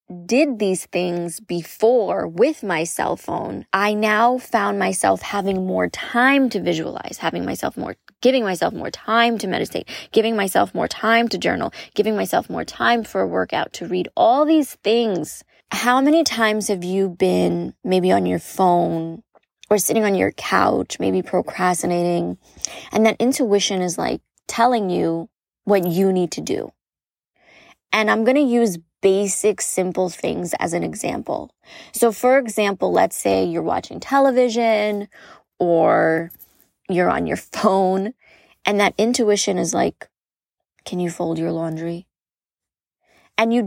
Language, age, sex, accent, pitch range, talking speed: English, 20-39, female, American, 180-235 Hz, 150 wpm